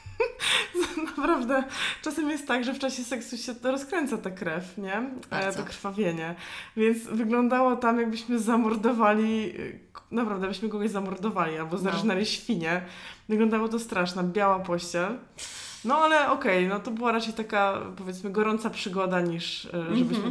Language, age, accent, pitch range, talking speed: Polish, 20-39, native, 180-240 Hz, 145 wpm